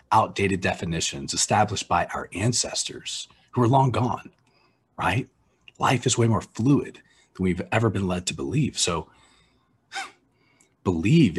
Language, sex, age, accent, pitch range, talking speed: English, male, 40-59, American, 95-125 Hz, 130 wpm